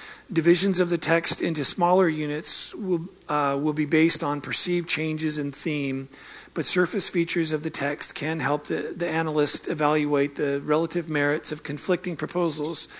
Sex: male